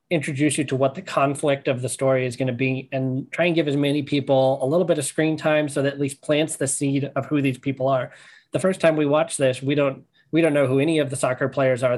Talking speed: 280 wpm